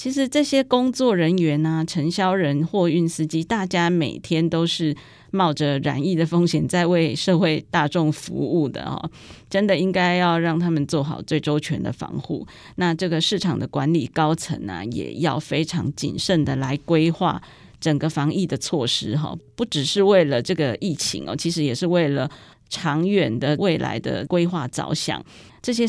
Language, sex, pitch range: Chinese, female, 145-180 Hz